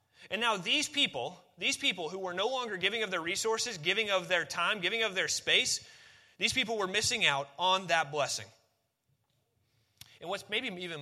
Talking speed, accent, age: 185 wpm, American, 30-49